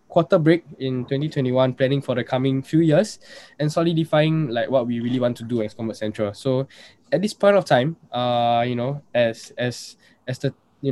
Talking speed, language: 200 wpm, English